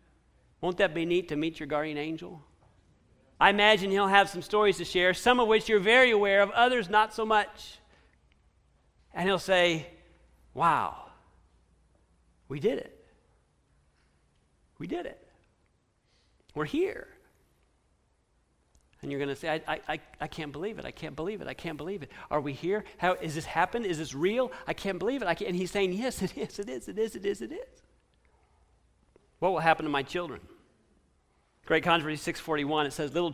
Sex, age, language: male, 40-59, English